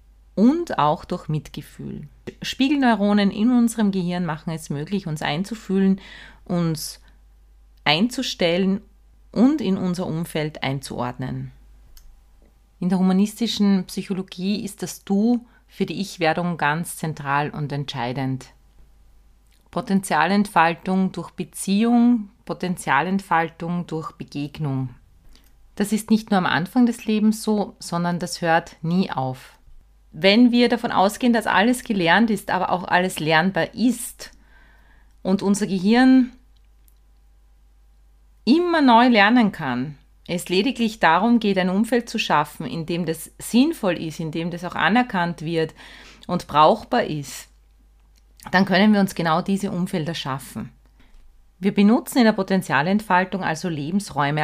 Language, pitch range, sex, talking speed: German, 145-205 Hz, female, 120 wpm